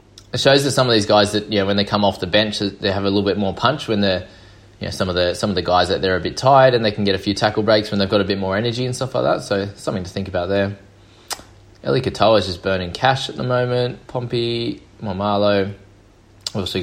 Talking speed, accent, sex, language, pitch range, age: 275 wpm, Australian, male, English, 95-115 Hz, 20-39